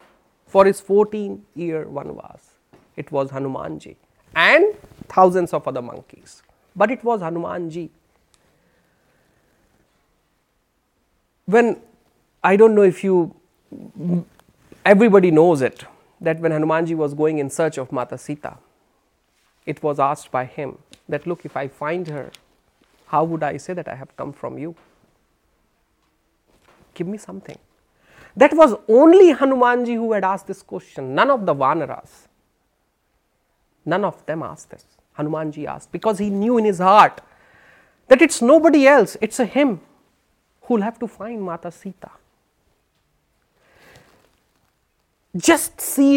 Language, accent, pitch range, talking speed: Hindi, native, 160-245 Hz, 140 wpm